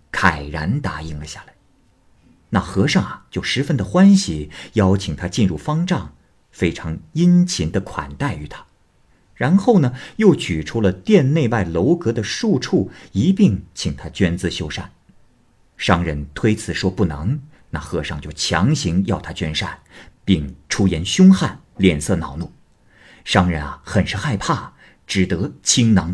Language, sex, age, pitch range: Chinese, male, 50-69, 85-110 Hz